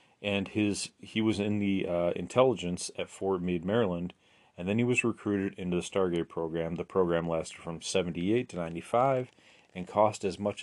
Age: 30-49